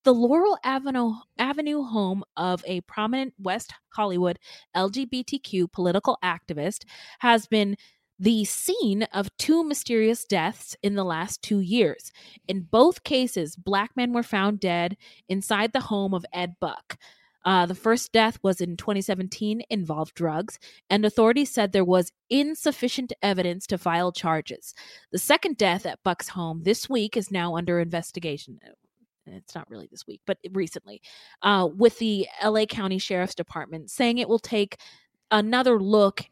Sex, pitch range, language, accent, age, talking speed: female, 185-230 Hz, English, American, 20-39, 150 wpm